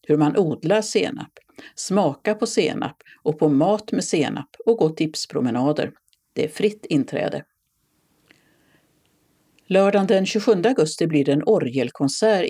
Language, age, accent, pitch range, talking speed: Swedish, 60-79, native, 145-210 Hz, 130 wpm